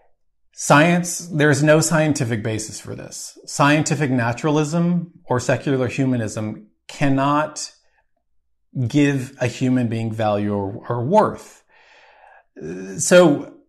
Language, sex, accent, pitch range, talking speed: English, male, American, 120-150 Hz, 100 wpm